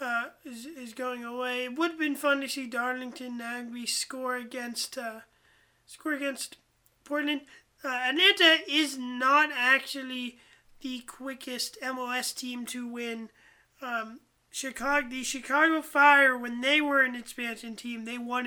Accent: American